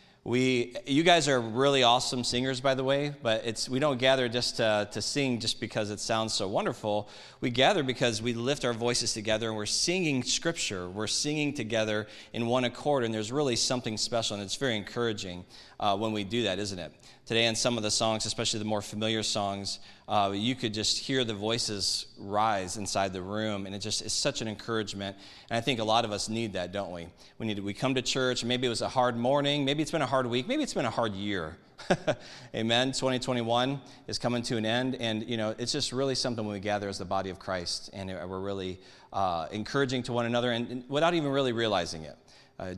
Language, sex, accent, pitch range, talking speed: English, male, American, 105-130 Hz, 225 wpm